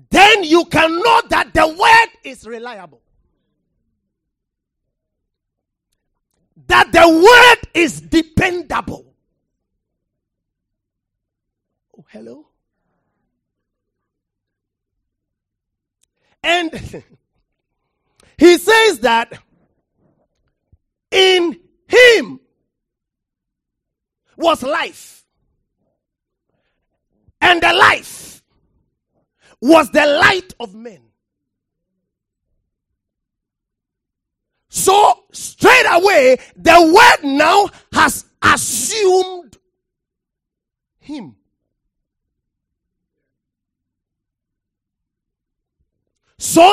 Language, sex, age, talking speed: English, male, 40-59, 55 wpm